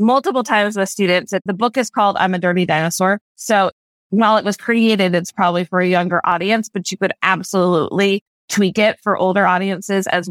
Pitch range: 180-215 Hz